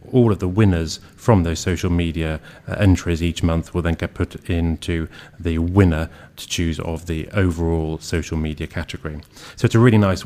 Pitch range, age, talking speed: 85-100 Hz, 30-49, 180 wpm